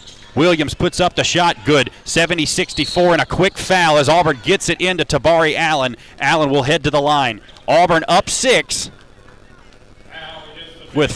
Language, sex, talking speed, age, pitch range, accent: English, male, 155 wpm, 30-49, 120-160 Hz, American